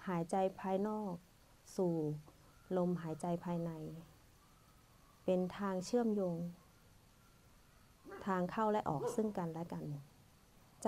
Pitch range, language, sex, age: 165-205 Hz, Thai, female, 20-39